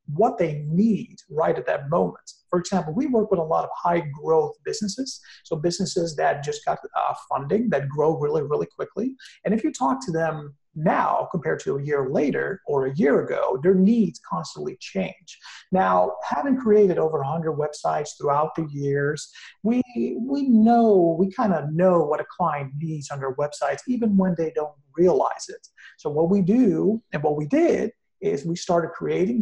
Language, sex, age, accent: English, male, 40-59, American